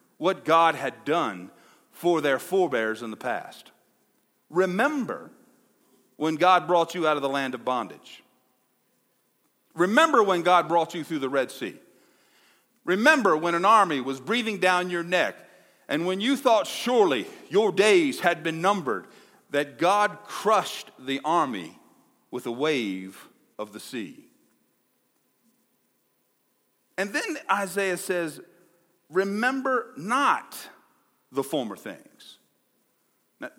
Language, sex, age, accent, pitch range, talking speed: English, male, 50-69, American, 170-240 Hz, 125 wpm